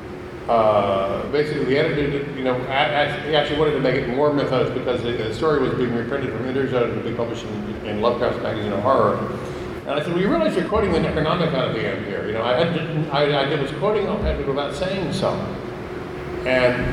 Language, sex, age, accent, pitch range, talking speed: English, male, 50-69, American, 120-160 Hz, 240 wpm